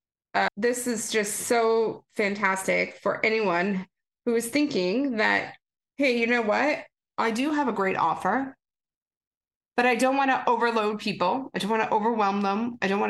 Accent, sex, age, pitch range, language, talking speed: American, female, 30-49, 195-265 Hz, English, 175 wpm